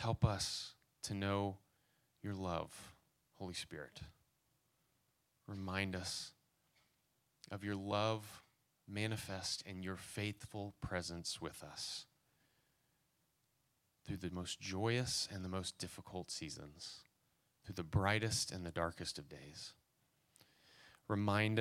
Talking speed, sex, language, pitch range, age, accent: 105 wpm, male, English, 95-110 Hz, 30-49, American